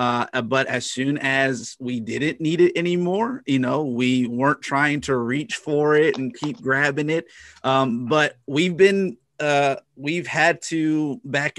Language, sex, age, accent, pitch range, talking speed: English, male, 30-49, American, 120-135 Hz, 165 wpm